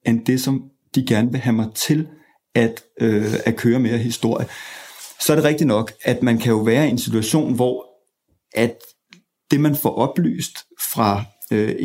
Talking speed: 180 wpm